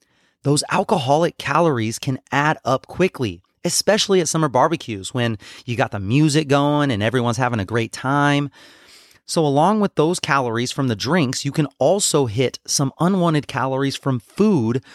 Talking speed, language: 160 wpm, English